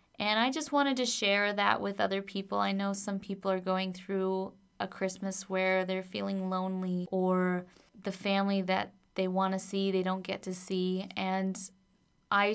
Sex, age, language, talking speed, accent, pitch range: female, 20-39, English, 180 wpm, American, 185-195 Hz